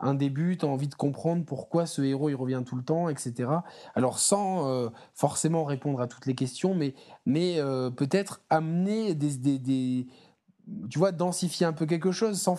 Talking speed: 195 wpm